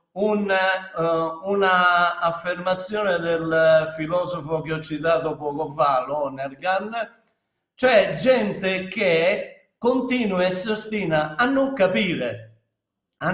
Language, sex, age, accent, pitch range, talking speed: Italian, male, 50-69, native, 155-215 Hz, 100 wpm